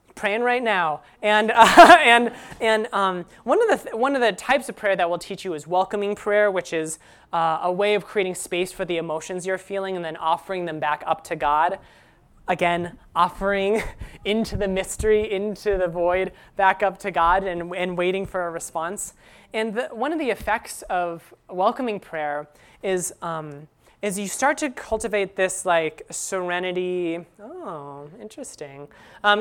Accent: American